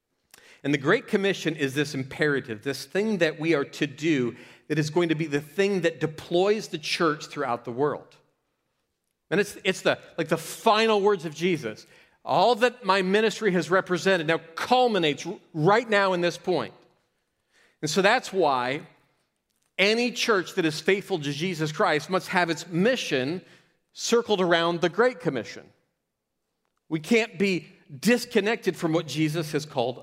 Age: 40-59